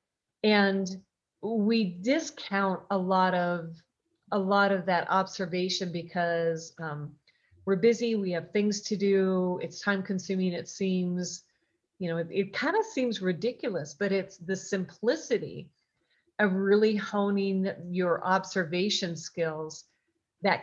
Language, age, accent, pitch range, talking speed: English, 40-59, American, 175-210 Hz, 125 wpm